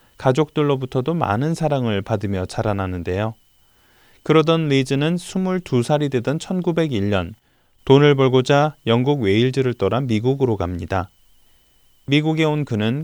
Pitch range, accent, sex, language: 105-145 Hz, native, male, Korean